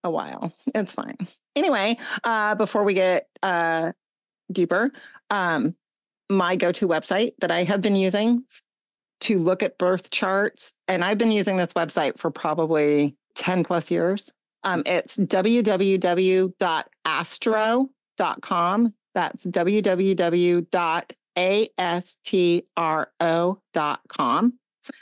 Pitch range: 165-215 Hz